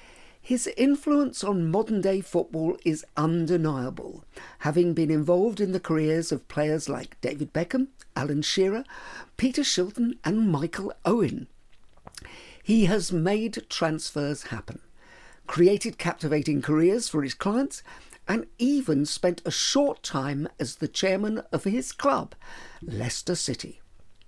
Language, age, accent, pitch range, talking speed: English, 50-69, British, 150-210 Hz, 125 wpm